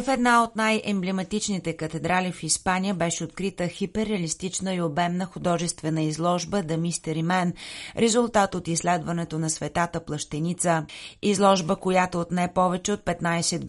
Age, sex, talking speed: 30-49, female, 125 wpm